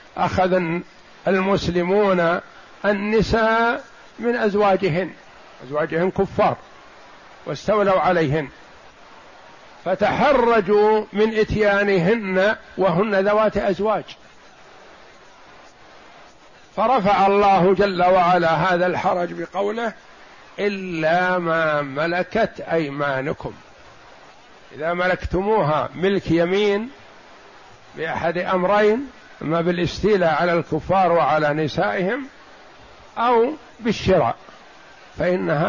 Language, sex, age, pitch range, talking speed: Arabic, male, 50-69, 175-210 Hz, 70 wpm